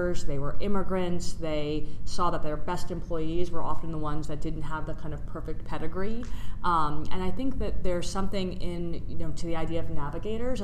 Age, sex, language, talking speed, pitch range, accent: 30-49, female, English, 205 wpm, 150-180 Hz, American